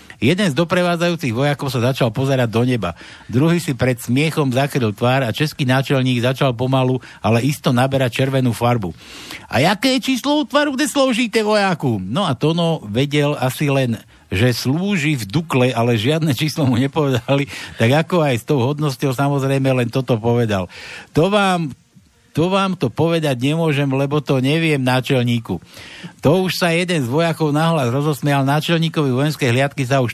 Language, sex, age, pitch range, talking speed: Slovak, male, 60-79, 130-175 Hz, 165 wpm